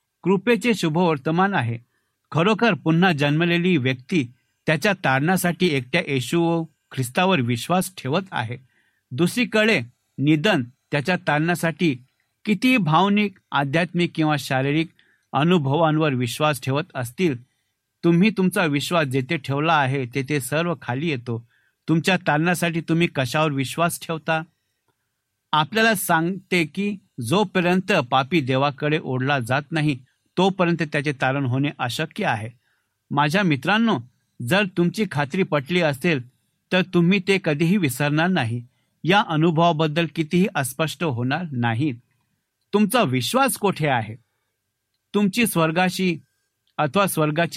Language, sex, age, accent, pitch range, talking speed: Marathi, male, 60-79, native, 130-180 Hz, 70 wpm